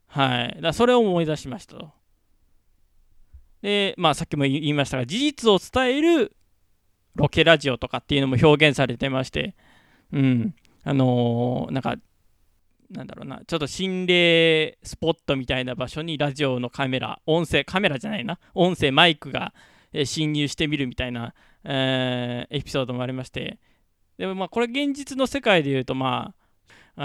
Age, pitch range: 20-39, 125-165 Hz